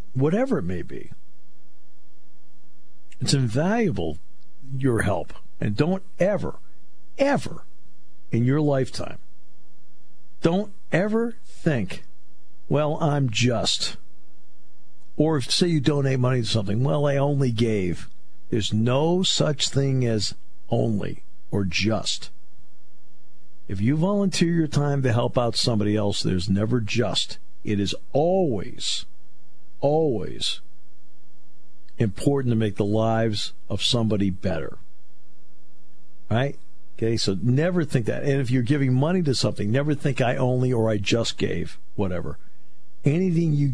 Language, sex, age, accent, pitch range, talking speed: English, male, 50-69, American, 95-140 Hz, 125 wpm